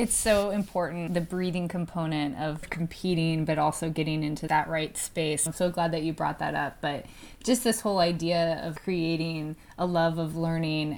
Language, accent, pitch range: English, American, 165-190 Hz